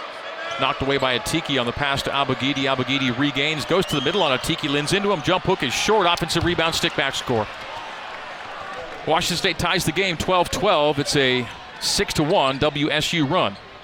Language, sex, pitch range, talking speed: English, male, 135-165 Hz, 175 wpm